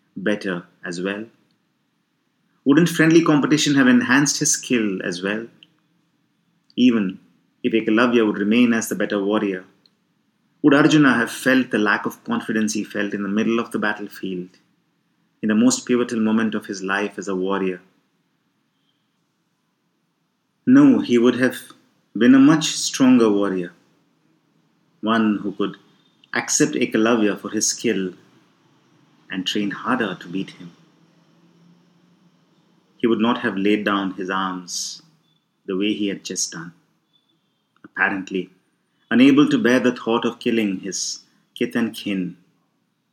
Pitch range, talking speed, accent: 100-150 Hz, 135 wpm, Indian